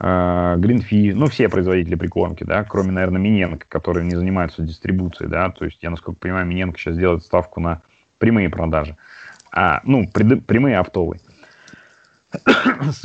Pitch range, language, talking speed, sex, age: 90-105 Hz, Russian, 140 wpm, male, 30-49